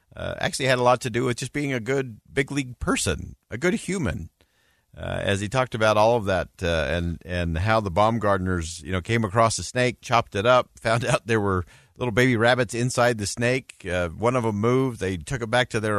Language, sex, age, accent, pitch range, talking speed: English, male, 50-69, American, 90-120 Hz, 235 wpm